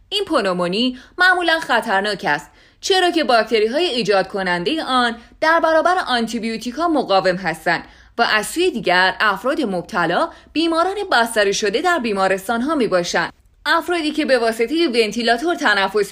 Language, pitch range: Persian, 195-315 Hz